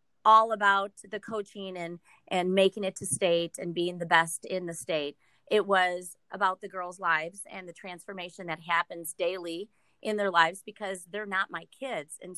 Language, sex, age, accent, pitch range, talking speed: English, female, 30-49, American, 175-210 Hz, 185 wpm